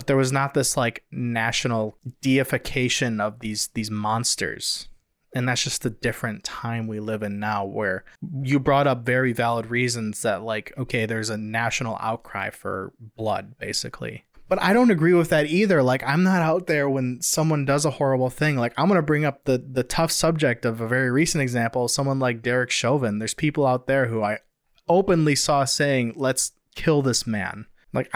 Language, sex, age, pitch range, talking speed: English, male, 20-39, 115-140 Hz, 190 wpm